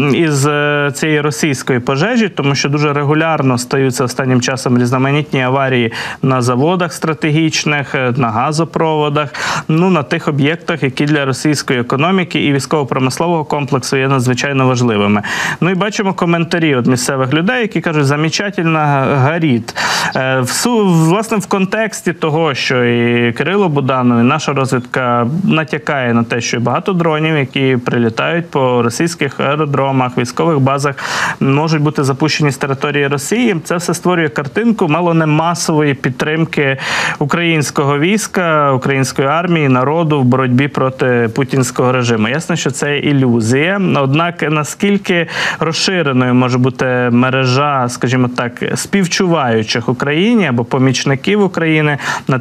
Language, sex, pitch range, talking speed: Ukrainian, male, 130-165 Hz, 125 wpm